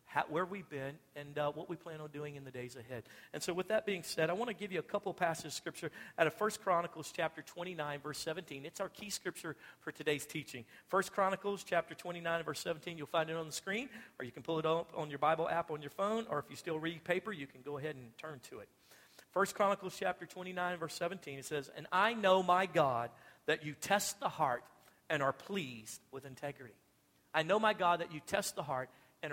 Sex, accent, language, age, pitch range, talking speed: male, American, English, 50-69, 150-180 Hz, 240 wpm